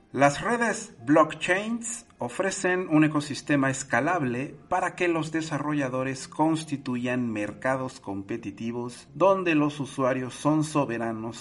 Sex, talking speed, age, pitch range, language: male, 100 wpm, 50-69, 115-150 Hz, Spanish